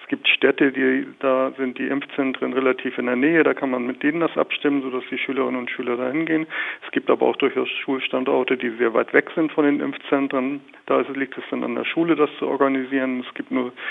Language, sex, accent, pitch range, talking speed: German, male, German, 125-140 Hz, 230 wpm